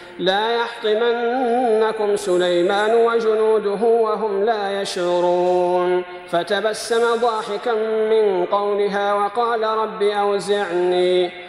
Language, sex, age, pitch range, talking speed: Arabic, male, 40-59, 180-235 Hz, 75 wpm